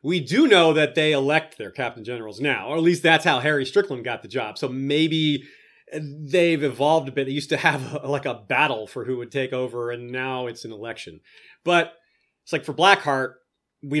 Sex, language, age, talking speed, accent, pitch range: male, English, 30-49, 215 wpm, American, 135-175 Hz